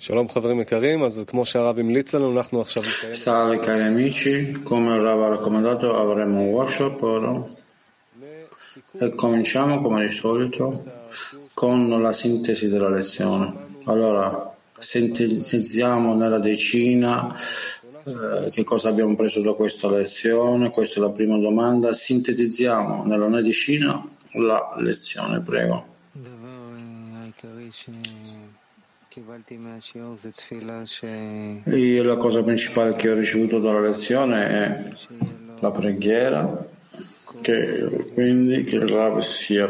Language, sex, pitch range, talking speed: Italian, male, 110-120 Hz, 90 wpm